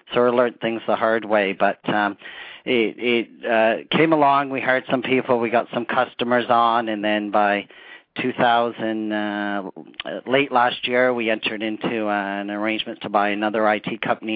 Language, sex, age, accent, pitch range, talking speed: English, male, 40-59, American, 105-120 Hz, 170 wpm